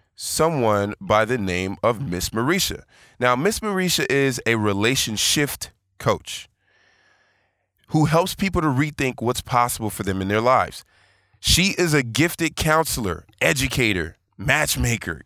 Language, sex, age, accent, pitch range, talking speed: English, male, 20-39, American, 100-130 Hz, 130 wpm